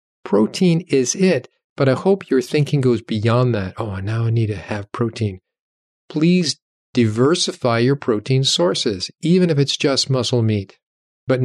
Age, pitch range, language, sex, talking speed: 40-59, 110-145 Hz, English, male, 155 wpm